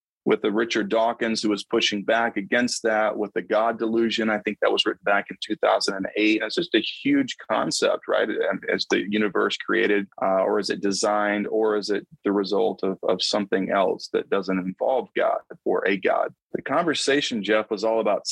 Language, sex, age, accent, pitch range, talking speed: English, male, 30-49, American, 100-115 Hz, 195 wpm